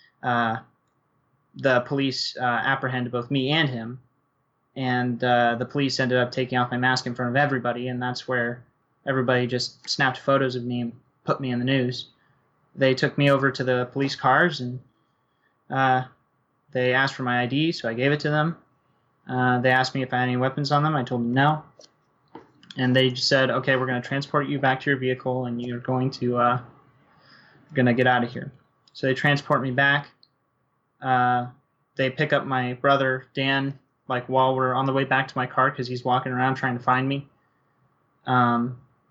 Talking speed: 195 wpm